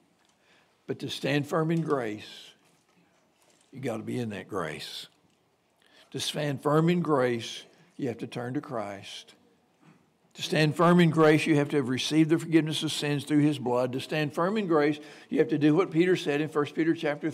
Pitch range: 125-160 Hz